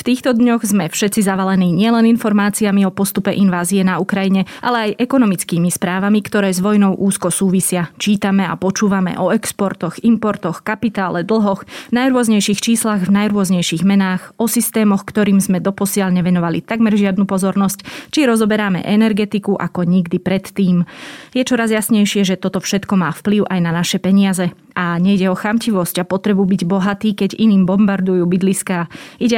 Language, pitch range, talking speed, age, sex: Slovak, 185-215 Hz, 155 wpm, 20-39, female